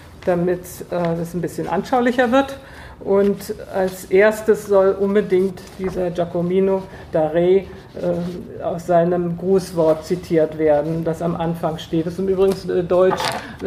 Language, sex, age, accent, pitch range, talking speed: German, female, 50-69, German, 170-195 Hz, 125 wpm